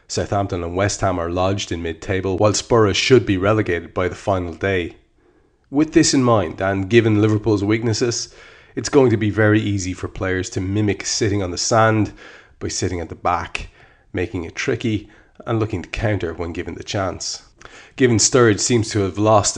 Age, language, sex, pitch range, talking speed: 30-49, English, male, 95-110 Hz, 185 wpm